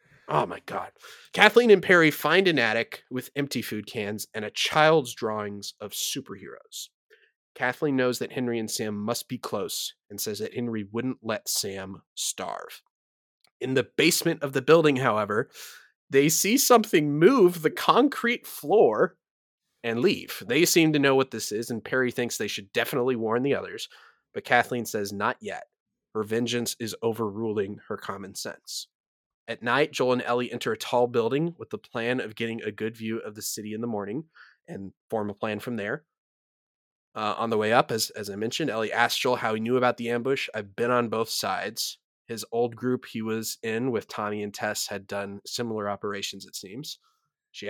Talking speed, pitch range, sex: 185 wpm, 110-140 Hz, male